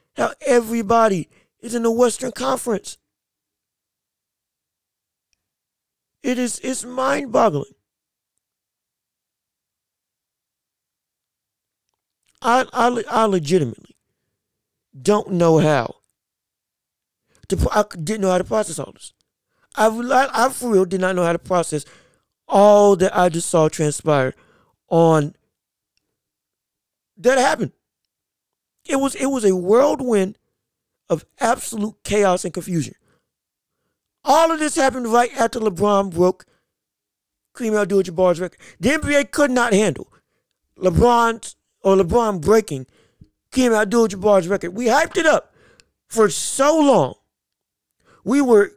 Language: English